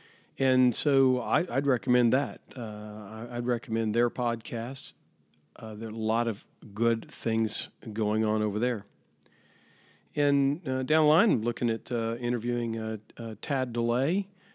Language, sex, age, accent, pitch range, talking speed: English, male, 40-59, American, 110-125 Hz, 155 wpm